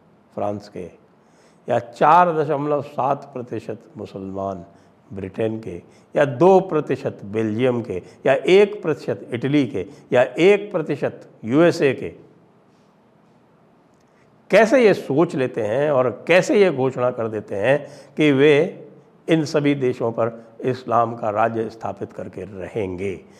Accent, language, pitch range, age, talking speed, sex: Indian, English, 115-160 Hz, 60-79, 125 wpm, male